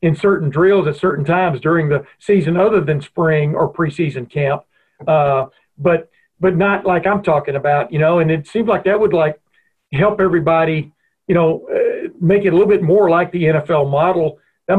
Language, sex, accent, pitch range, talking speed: English, male, American, 150-190 Hz, 195 wpm